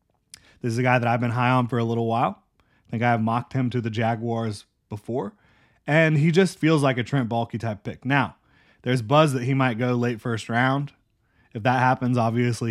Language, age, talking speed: English, 30-49, 220 wpm